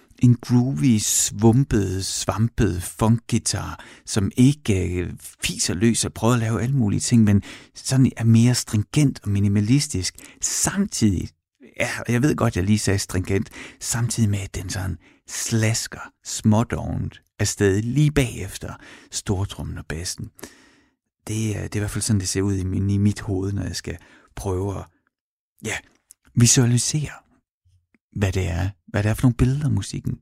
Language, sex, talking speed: Danish, male, 155 wpm